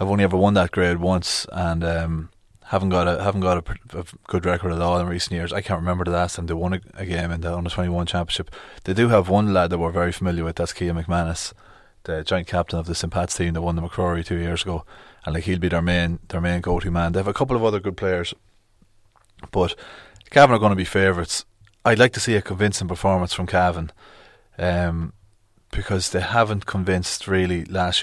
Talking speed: 230 wpm